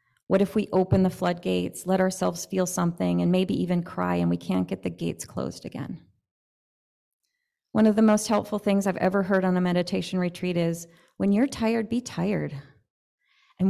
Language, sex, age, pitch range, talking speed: English, female, 30-49, 170-210 Hz, 185 wpm